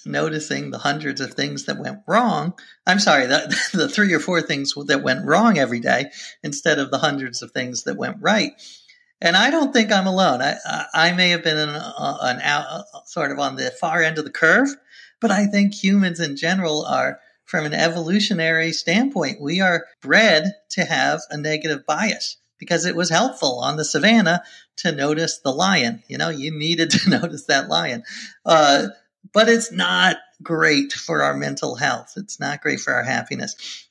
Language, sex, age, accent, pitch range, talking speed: English, male, 40-59, American, 150-205 Hz, 185 wpm